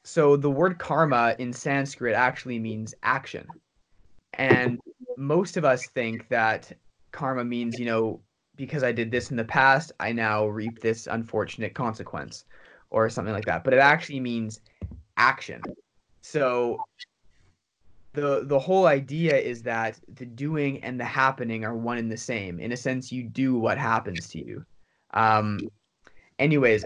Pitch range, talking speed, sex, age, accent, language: 115-145 Hz, 155 wpm, male, 20-39, American, English